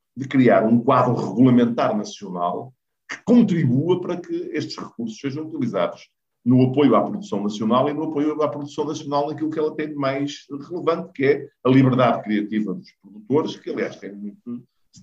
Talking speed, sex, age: 170 wpm, male, 50-69